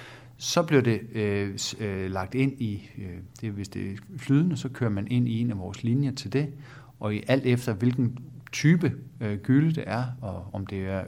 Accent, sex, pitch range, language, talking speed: native, male, 110-135 Hz, Danish, 210 wpm